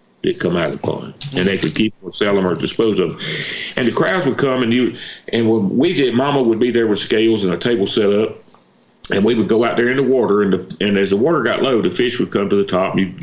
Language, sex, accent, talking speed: English, male, American, 295 wpm